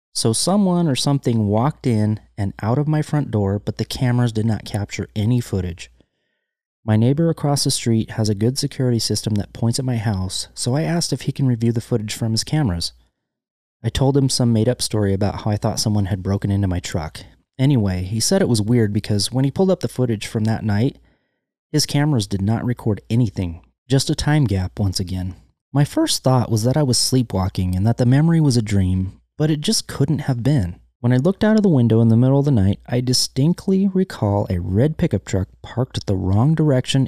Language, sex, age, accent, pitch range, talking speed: English, male, 30-49, American, 105-140 Hz, 220 wpm